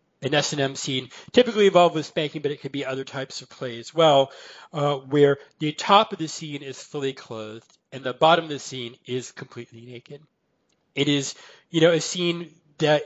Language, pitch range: English, 135-165 Hz